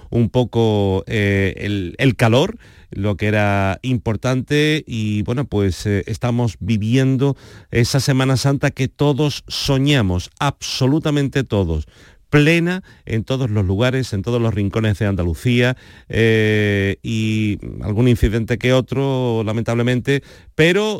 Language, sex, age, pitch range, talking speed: Spanish, male, 40-59, 105-140 Hz, 125 wpm